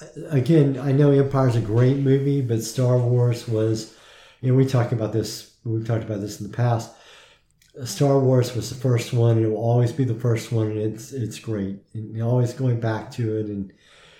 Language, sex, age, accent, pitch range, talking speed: English, male, 50-69, American, 110-125 Hz, 205 wpm